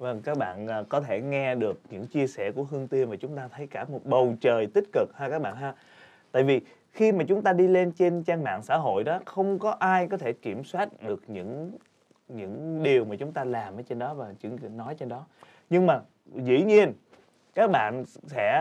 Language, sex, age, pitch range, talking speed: Vietnamese, male, 20-39, 135-180 Hz, 225 wpm